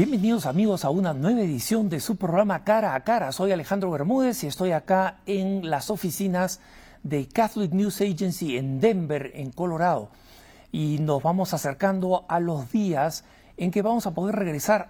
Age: 60-79